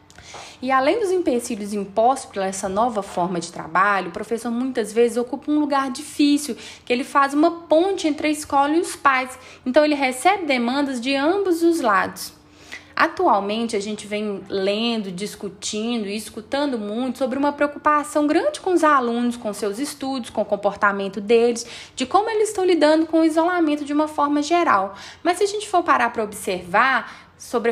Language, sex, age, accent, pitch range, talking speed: Portuguese, female, 10-29, Brazilian, 210-305 Hz, 180 wpm